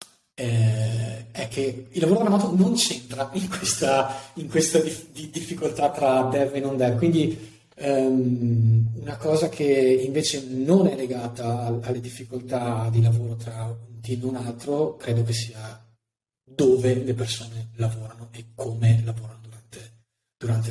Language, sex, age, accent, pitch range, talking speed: Italian, male, 30-49, native, 115-135 Hz, 150 wpm